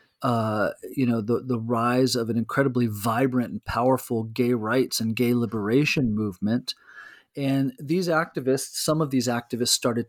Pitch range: 115-130 Hz